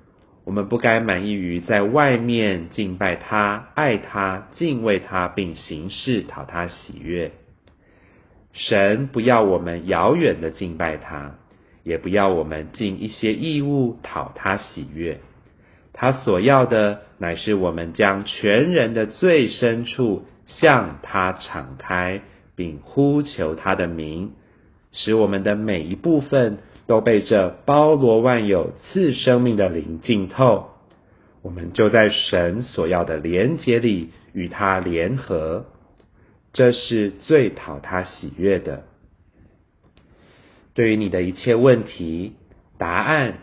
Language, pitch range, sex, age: Chinese, 90-120 Hz, male, 30-49